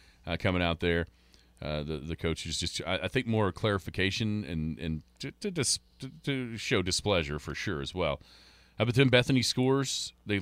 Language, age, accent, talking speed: English, 40-59, American, 195 wpm